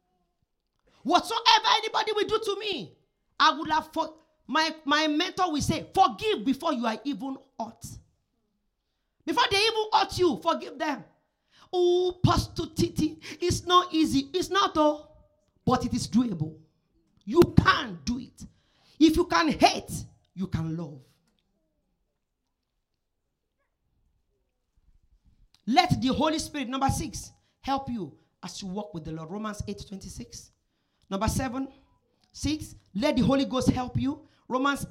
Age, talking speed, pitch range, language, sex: 40-59, 140 wpm, 225-325 Hz, English, male